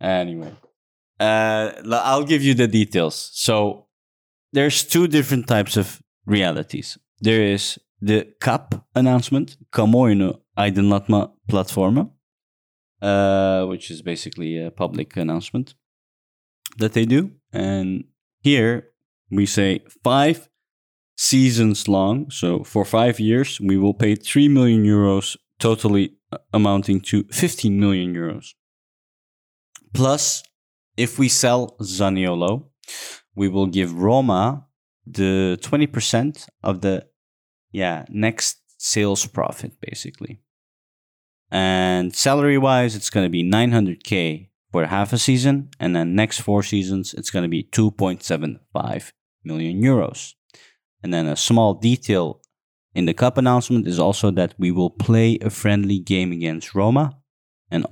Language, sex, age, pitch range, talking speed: English, male, 20-39, 95-120 Hz, 120 wpm